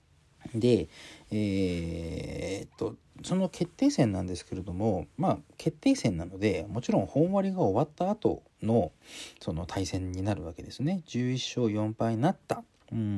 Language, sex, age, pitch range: Japanese, male, 40-59, 95-145 Hz